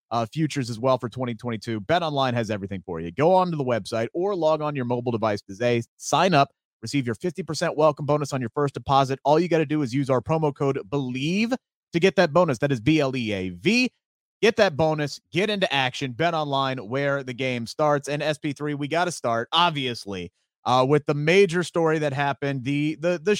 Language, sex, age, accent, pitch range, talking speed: English, male, 30-49, American, 135-190 Hz, 215 wpm